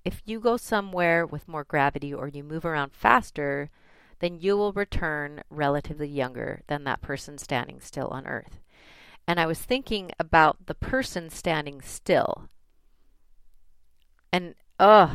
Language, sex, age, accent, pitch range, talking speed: English, female, 30-49, American, 150-200 Hz, 145 wpm